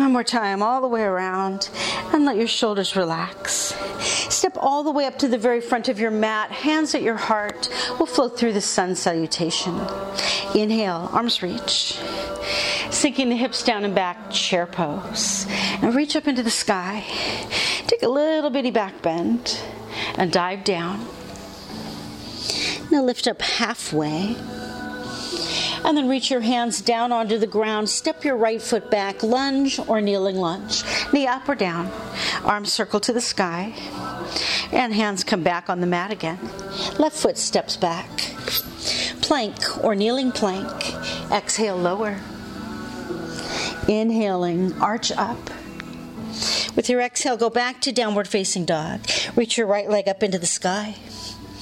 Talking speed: 150 wpm